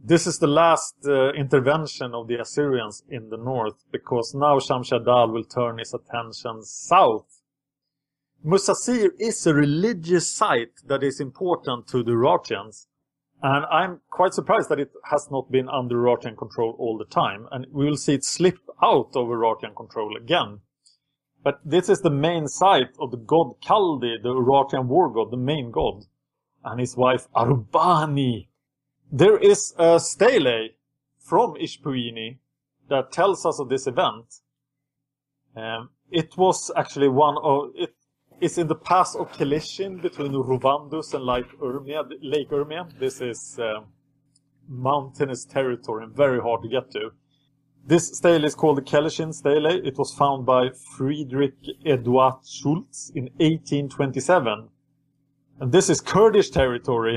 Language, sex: English, male